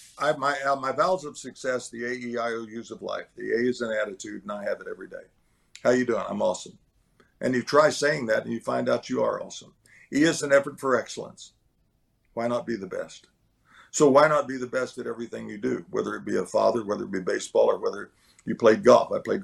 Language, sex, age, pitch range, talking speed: English, male, 50-69, 115-130 Hz, 240 wpm